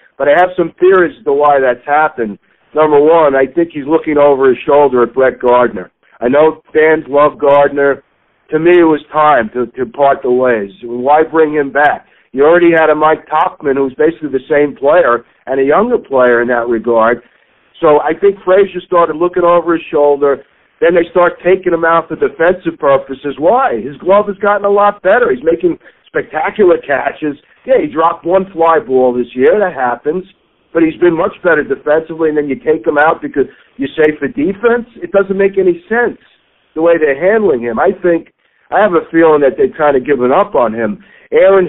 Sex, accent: male, American